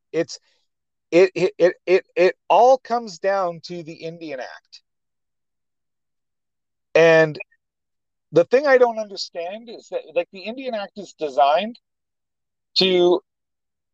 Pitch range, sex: 150-210 Hz, male